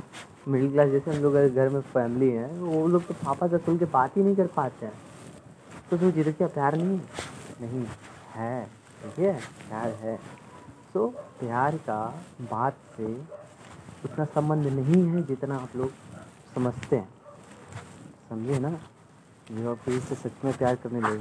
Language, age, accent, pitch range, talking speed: Hindi, 30-49, native, 120-150 Hz, 165 wpm